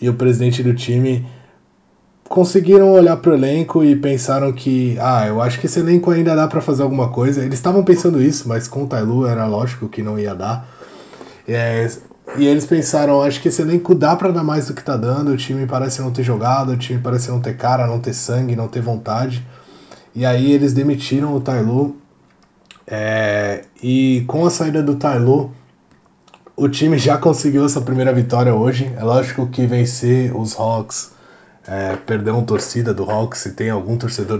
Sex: male